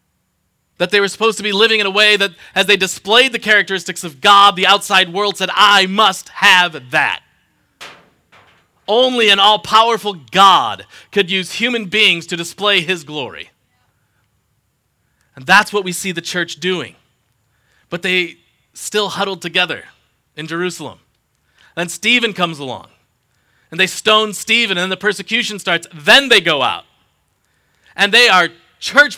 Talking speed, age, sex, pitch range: 150 wpm, 30-49, male, 170-205 Hz